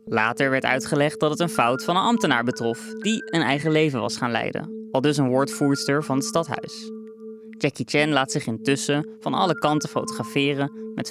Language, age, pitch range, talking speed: Dutch, 20-39, 135-175 Hz, 190 wpm